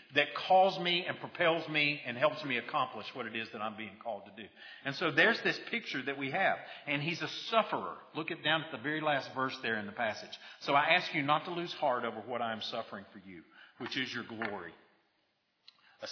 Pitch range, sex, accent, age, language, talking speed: 140-175 Hz, male, American, 50-69, English, 230 wpm